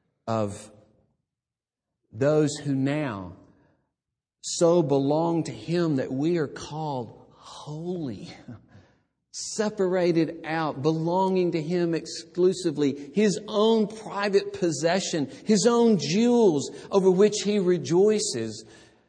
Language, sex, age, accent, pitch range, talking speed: English, male, 50-69, American, 150-220 Hz, 95 wpm